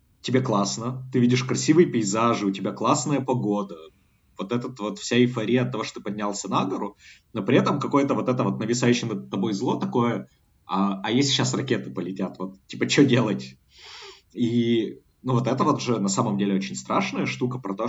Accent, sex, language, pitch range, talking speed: native, male, Russian, 95-125 Hz, 195 wpm